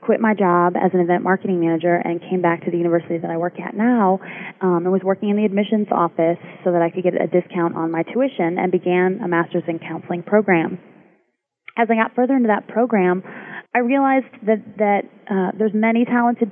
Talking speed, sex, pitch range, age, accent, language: 215 wpm, female, 175-215 Hz, 20-39, American, English